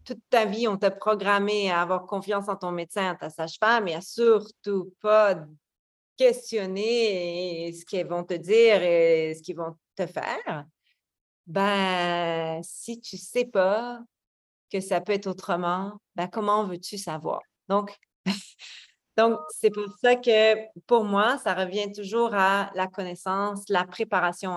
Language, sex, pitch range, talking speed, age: French, female, 180-230 Hz, 150 wpm, 30-49